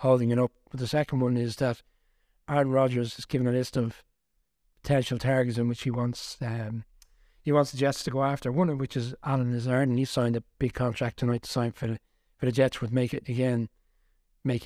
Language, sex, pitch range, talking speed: English, male, 120-135 Hz, 225 wpm